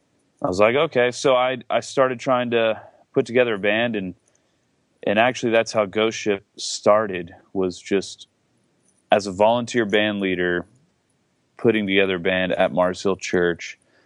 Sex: male